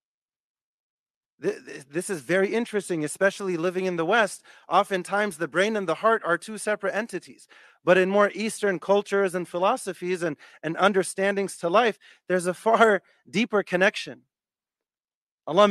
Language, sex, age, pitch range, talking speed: English, male, 40-59, 175-210 Hz, 140 wpm